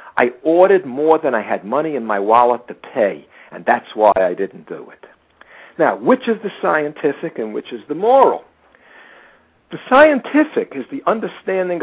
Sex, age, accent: male, 60-79, American